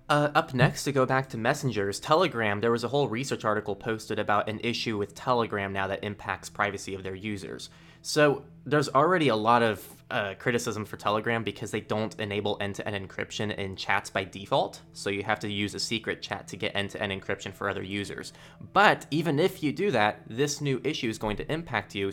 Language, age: English, 20-39